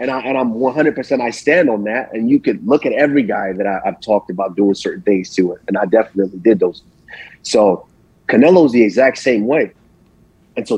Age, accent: 30-49, American